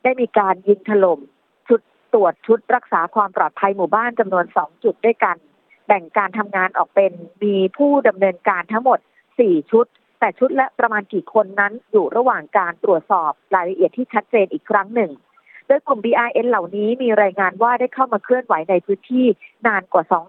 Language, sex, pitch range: Thai, female, 185-235 Hz